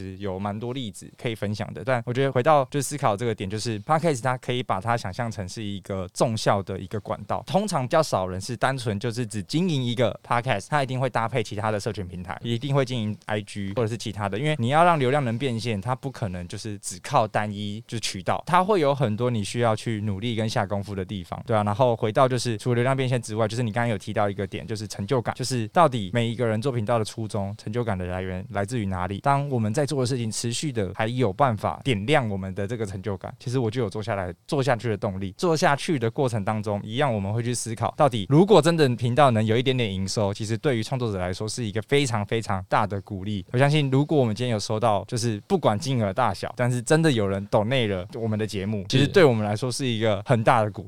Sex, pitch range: male, 105-130 Hz